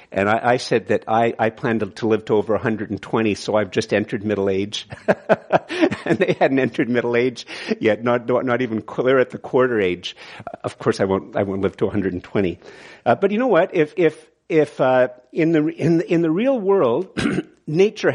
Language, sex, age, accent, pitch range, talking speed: English, male, 50-69, American, 110-145 Hz, 200 wpm